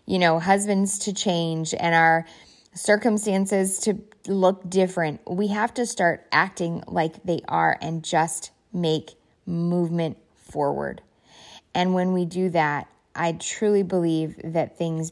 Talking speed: 135 wpm